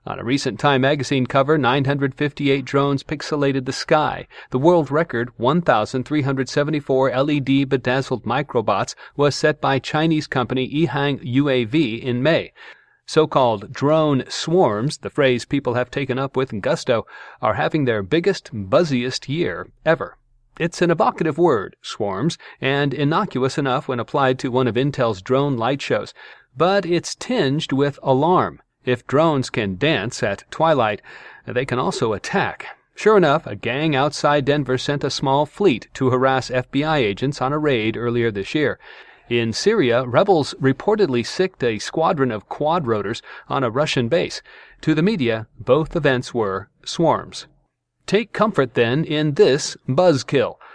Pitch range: 125-155 Hz